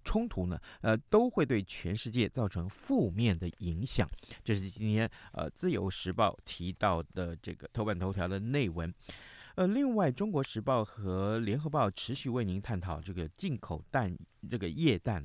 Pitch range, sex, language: 95-135 Hz, male, Chinese